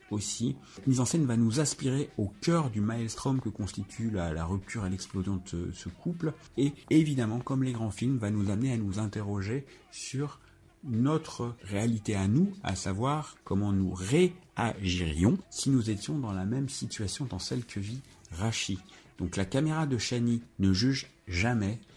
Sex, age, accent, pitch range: male, 50-69, French, 95-130 Hz